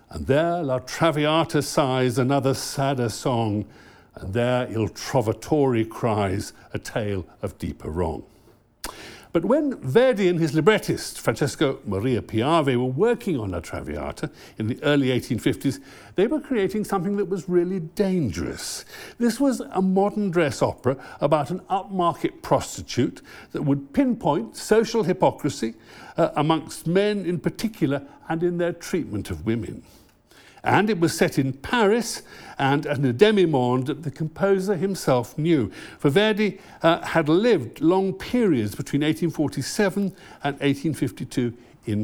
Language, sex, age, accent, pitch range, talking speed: English, male, 60-79, British, 130-195 Hz, 140 wpm